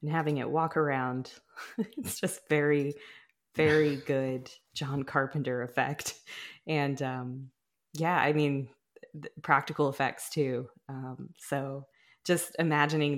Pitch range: 140-165 Hz